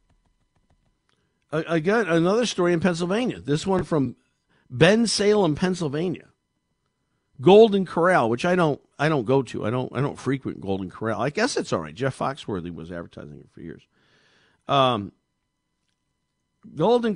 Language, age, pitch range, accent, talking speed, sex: English, 50-69, 135-205 Hz, American, 145 wpm, male